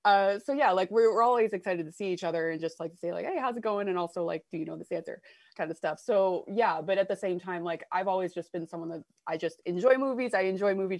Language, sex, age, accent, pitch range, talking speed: English, female, 20-39, American, 165-200 Hz, 290 wpm